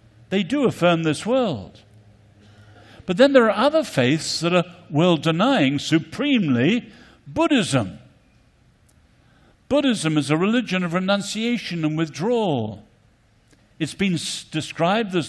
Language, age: English, 60-79